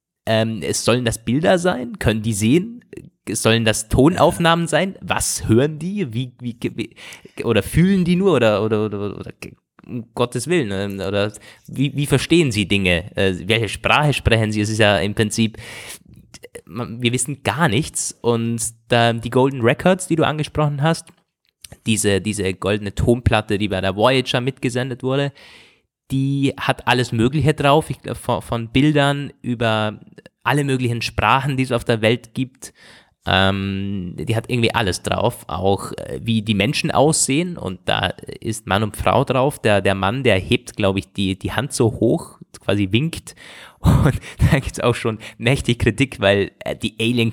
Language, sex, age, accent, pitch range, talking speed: German, male, 20-39, German, 105-135 Hz, 165 wpm